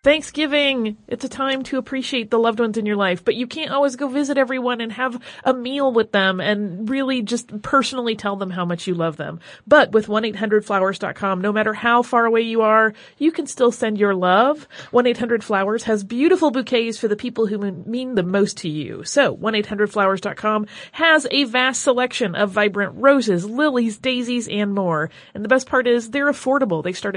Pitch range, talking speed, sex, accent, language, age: 195-255 Hz, 190 wpm, female, American, English, 30-49